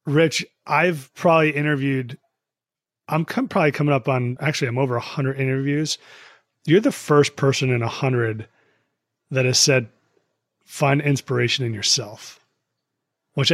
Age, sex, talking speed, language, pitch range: 30-49, male, 135 wpm, English, 125-150 Hz